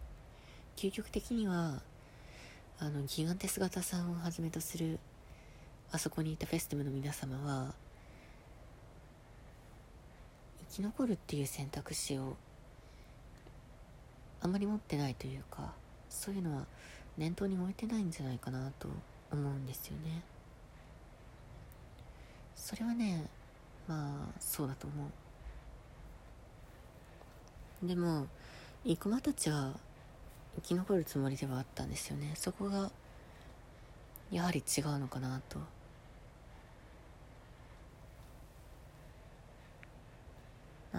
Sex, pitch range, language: female, 140-190 Hz, Japanese